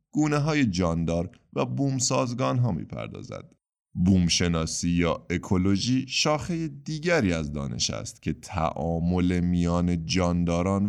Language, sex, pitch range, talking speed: Persian, male, 80-115 Hz, 105 wpm